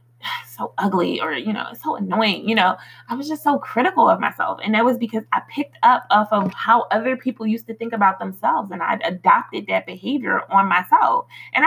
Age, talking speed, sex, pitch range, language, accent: 20-39, 210 wpm, female, 200-260 Hz, English, American